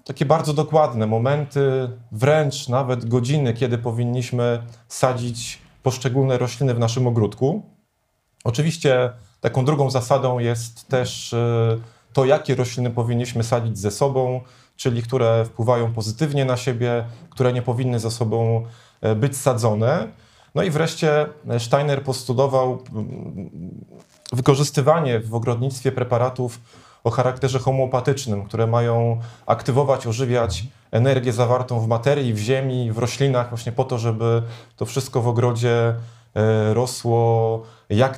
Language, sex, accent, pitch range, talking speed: Polish, male, native, 115-135 Hz, 120 wpm